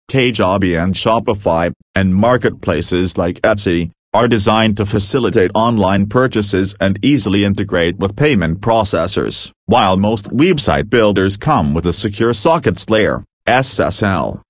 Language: English